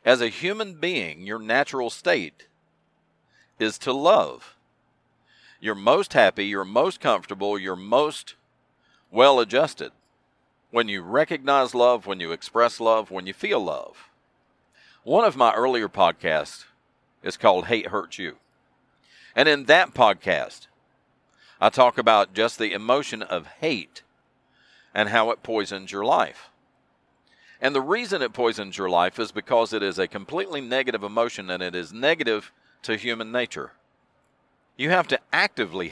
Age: 50-69